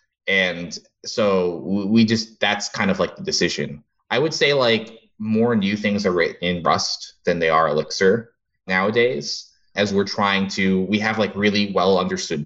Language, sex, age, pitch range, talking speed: English, male, 20-39, 95-135 Hz, 175 wpm